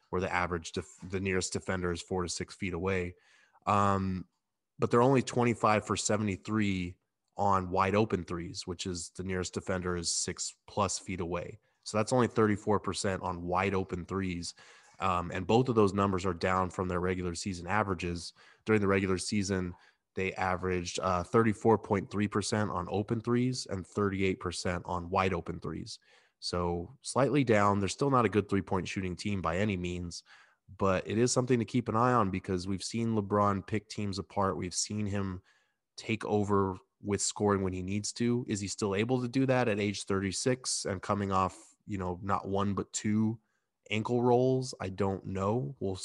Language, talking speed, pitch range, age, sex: English, 180 wpm, 90-105 Hz, 20-39, male